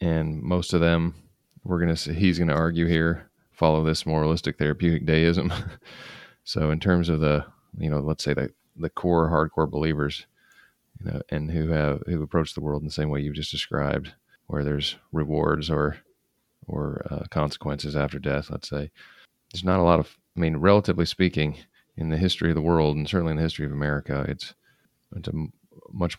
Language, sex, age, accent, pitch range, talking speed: English, male, 30-49, American, 75-85 Hz, 195 wpm